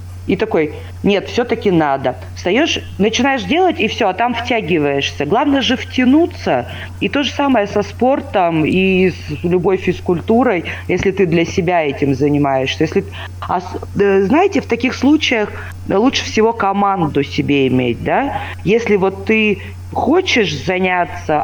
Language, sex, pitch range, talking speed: Russian, female, 155-215 Hz, 130 wpm